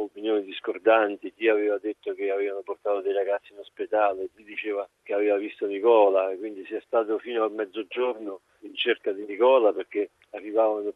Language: Italian